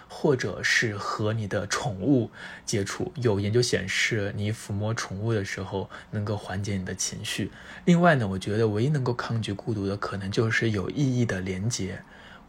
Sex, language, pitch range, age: male, Chinese, 100-125 Hz, 20-39